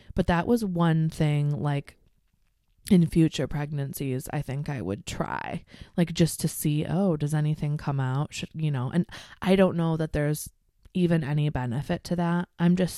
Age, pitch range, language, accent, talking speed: 20-39, 145-175 Hz, English, American, 175 wpm